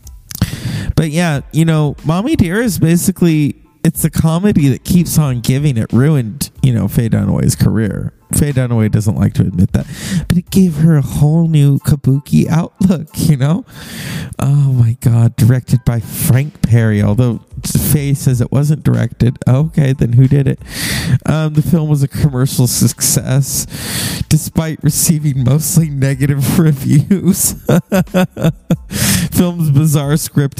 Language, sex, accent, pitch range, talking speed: English, male, American, 135-165 Hz, 145 wpm